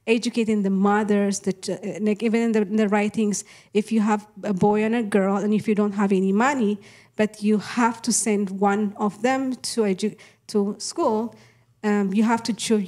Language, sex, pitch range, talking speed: English, female, 195-220 Hz, 200 wpm